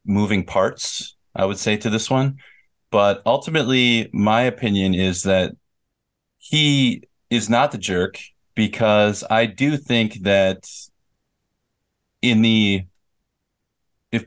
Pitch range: 100-130 Hz